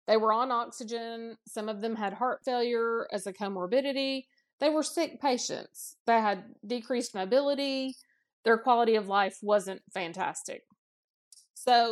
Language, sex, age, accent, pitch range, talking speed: English, female, 30-49, American, 210-275 Hz, 140 wpm